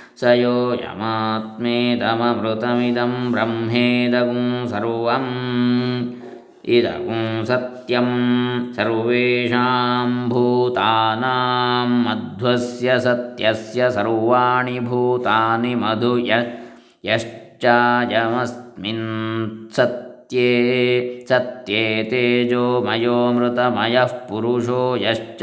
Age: 20-39